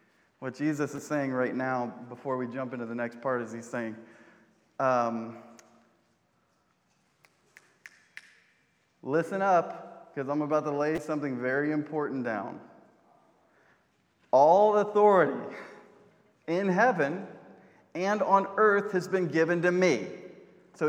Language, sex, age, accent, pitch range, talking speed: English, male, 30-49, American, 130-180 Hz, 120 wpm